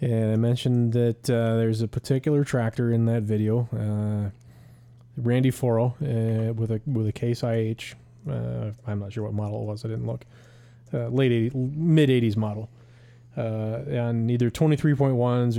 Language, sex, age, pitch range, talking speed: English, male, 30-49, 115-130 Hz, 155 wpm